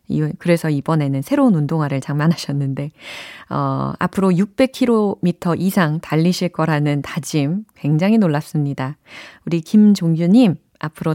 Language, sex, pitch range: Korean, female, 160-225 Hz